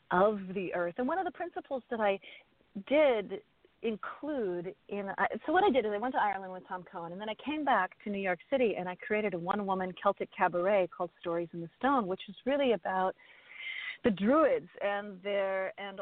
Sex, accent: female, American